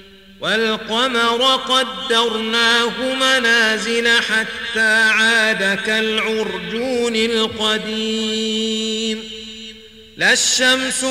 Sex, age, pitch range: male, 40-59, 220-230 Hz